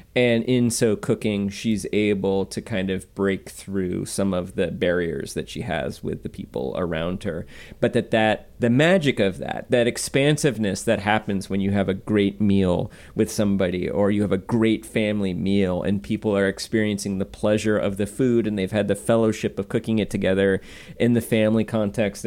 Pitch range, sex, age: 95-120 Hz, male, 30-49